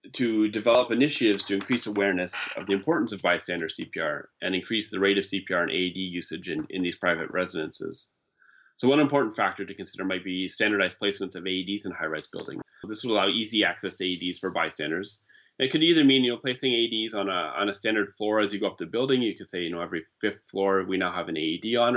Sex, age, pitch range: male, 30-49, 90-110 Hz